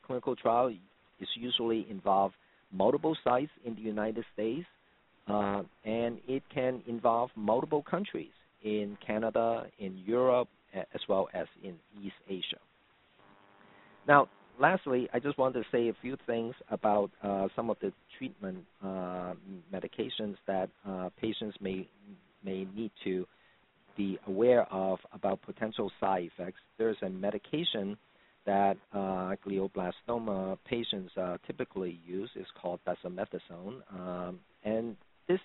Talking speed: 125 wpm